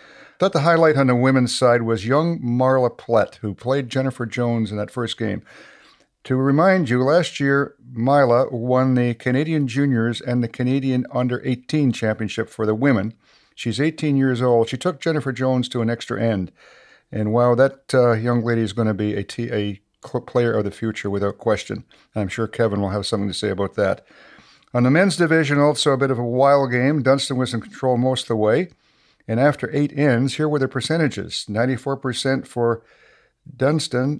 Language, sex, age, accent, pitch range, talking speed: English, male, 60-79, American, 115-140 Hz, 190 wpm